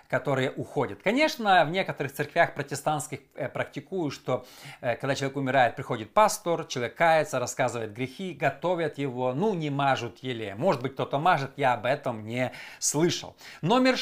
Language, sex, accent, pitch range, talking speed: Russian, male, native, 140-200 Hz, 155 wpm